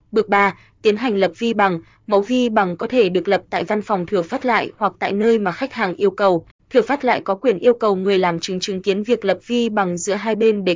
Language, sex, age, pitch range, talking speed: Vietnamese, female, 20-39, 190-230 Hz, 270 wpm